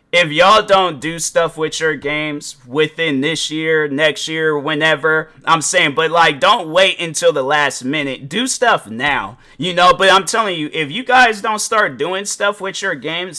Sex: male